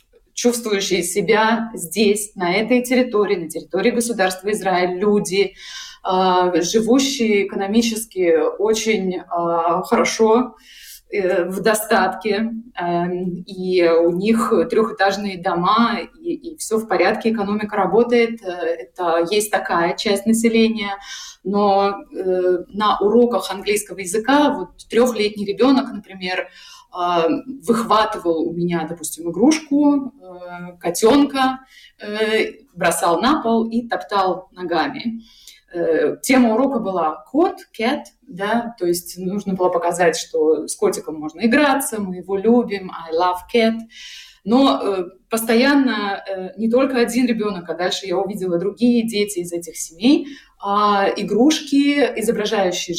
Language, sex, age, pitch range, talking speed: Russian, female, 20-39, 185-240 Hz, 115 wpm